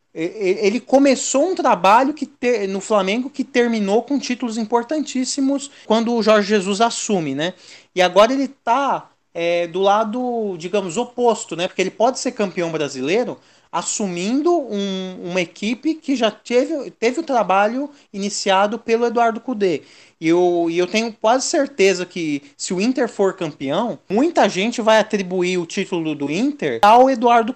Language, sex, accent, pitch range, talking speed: Portuguese, male, Brazilian, 170-230 Hz, 155 wpm